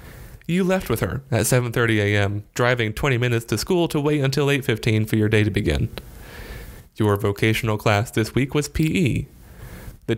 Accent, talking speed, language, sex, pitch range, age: American, 170 wpm, English, male, 105-135 Hz, 30-49